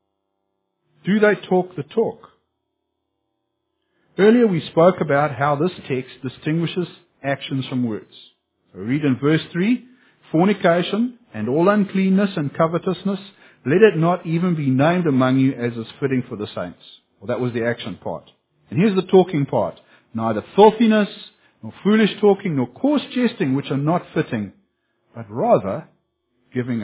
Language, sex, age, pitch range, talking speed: English, male, 50-69, 135-215 Hz, 150 wpm